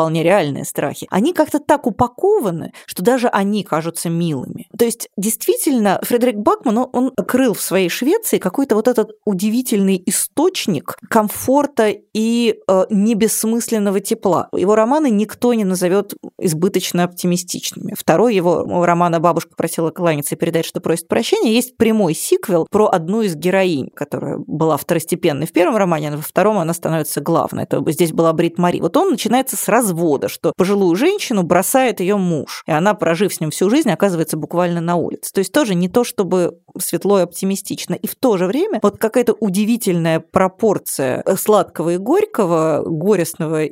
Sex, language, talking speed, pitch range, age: female, Russian, 160 wpm, 165-220 Hz, 20-39